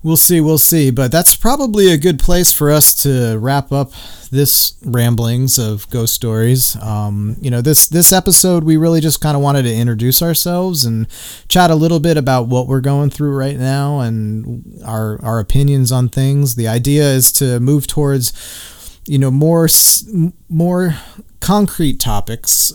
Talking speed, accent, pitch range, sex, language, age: 170 wpm, American, 115-145 Hz, male, English, 40-59